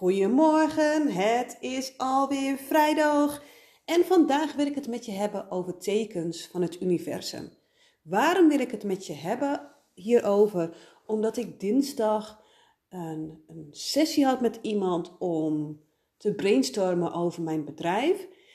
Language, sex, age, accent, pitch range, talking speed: Dutch, female, 40-59, Dutch, 185-290 Hz, 135 wpm